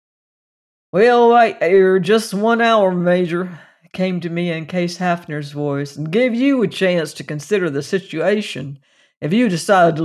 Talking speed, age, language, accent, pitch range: 160 wpm, 60-79, English, American, 155-190 Hz